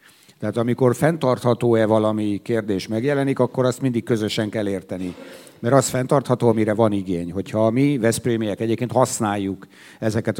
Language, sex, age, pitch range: Hungarian, male, 50-69, 100-120 Hz